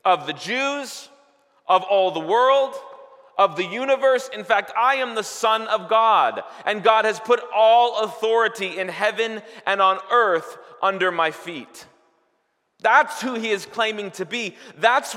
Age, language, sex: 30-49, English, male